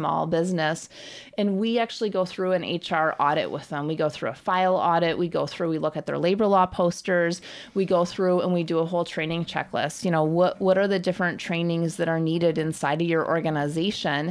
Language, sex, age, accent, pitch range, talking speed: English, female, 30-49, American, 170-200 Hz, 220 wpm